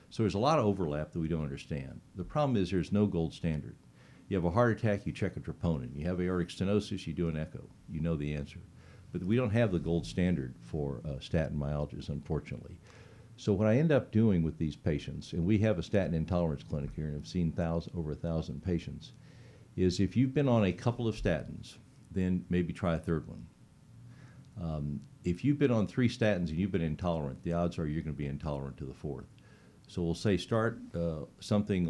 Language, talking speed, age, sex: English, 220 wpm, 60-79, male